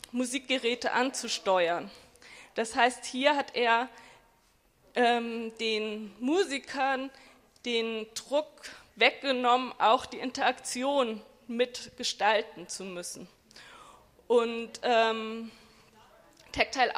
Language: German